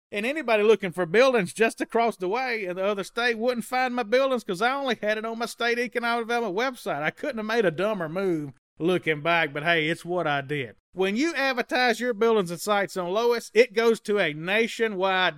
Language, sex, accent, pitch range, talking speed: English, male, American, 165-220 Hz, 225 wpm